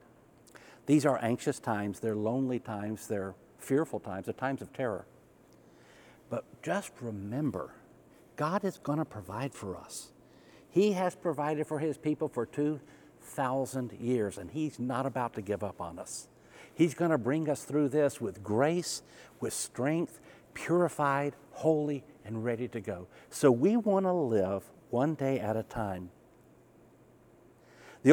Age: 60-79